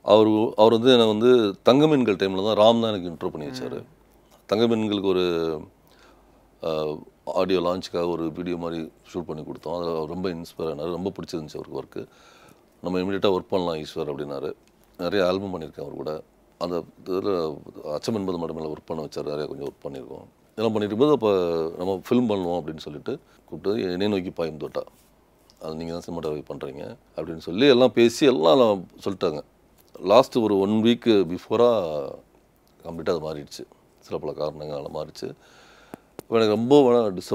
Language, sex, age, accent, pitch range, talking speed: Tamil, male, 40-59, native, 80-110 Hz, 150 wpm